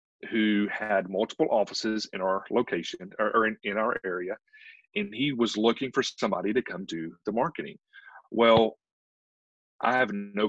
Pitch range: 95-125 Hz